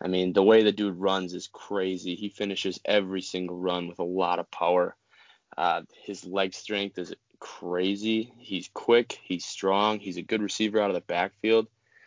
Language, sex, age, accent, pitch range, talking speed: English, male, 20-39, American, 90-100 Hz, 185 wpm